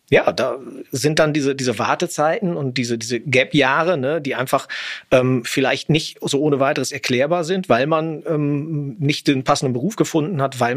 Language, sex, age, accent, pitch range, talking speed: German, male, 40-59, German, 130-160 Hz, 180 wpm